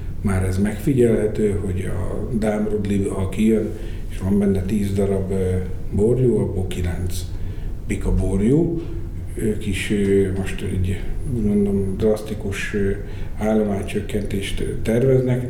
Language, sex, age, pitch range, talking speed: Hungarian, male, 50-69, 95-110 Hz, 100 wpm